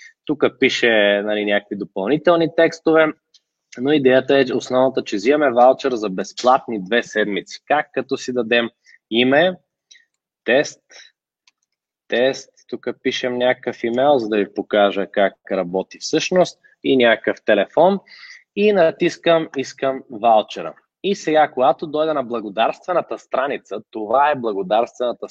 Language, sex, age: Bulgarian, male, 20-39